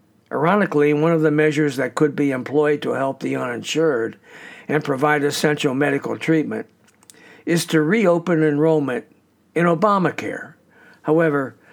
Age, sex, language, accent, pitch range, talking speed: 60-79, male, English, American, 140-165 Hz, 130 wpm